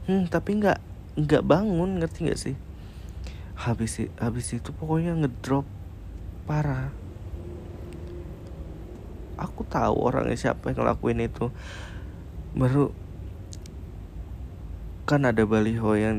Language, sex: Indonesian, male